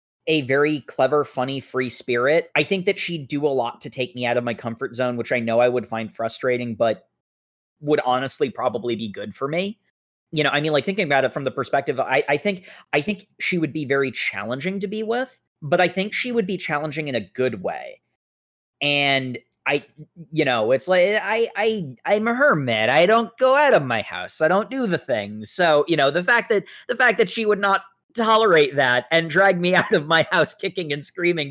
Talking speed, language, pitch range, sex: 225 wpm, English, 125-185 Hz, male